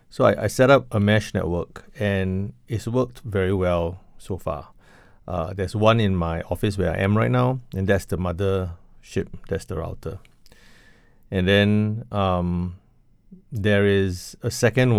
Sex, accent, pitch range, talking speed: male, Malaysian, 90-110 Hz, 165 wpm